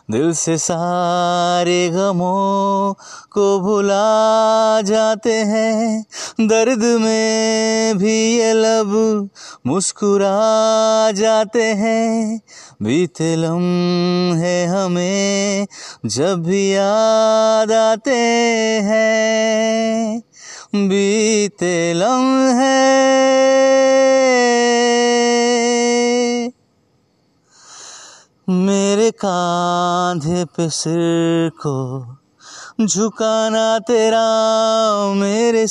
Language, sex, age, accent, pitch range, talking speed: Hindi, male, 30-49, native, 180-225 Hz, 60 wpm